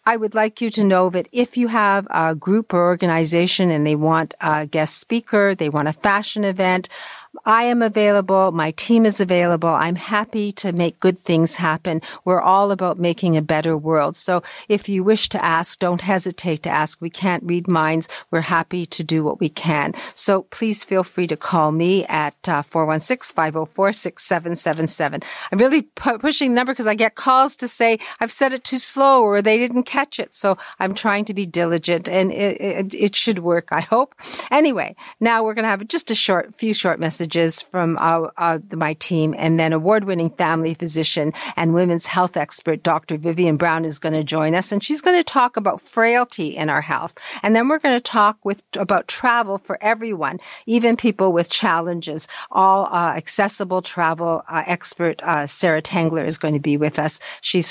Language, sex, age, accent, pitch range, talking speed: English, female, 50-69, American, 165-215 Hz, 195 wpm